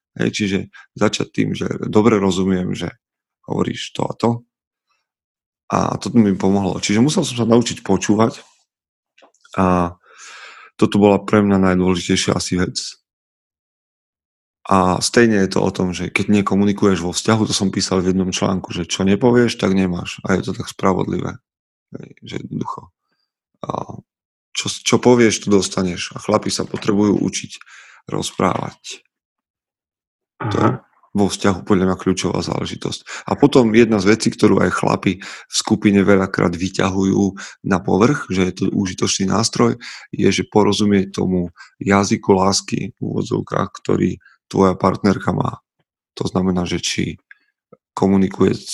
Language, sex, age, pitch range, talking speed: Slovak, male, 30-49, 95-105 Hz, 145 wpm